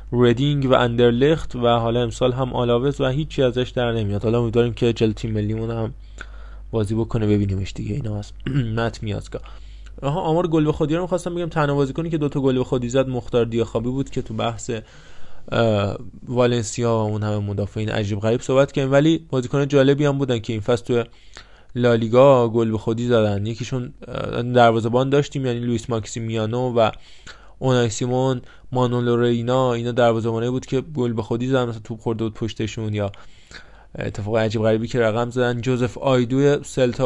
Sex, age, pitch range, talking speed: male, 20-39, 115-135 Hz, 170 wpm